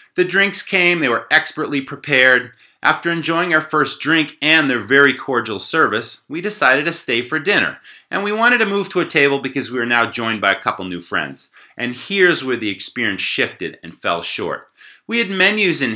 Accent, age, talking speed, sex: American, 30-49, 205 wpm, male